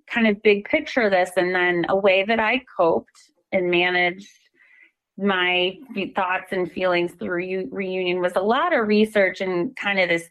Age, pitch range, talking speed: 30-49, 175-220 Hz, 170 wpm